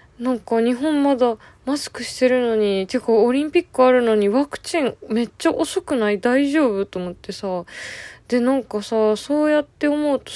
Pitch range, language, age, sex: 170-255 Hz, Japanese, 20-39, female